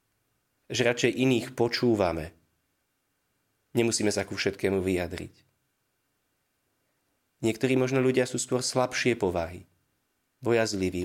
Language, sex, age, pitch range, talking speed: Slovak, male, 30-49, 90-125 Hz, 90 wpm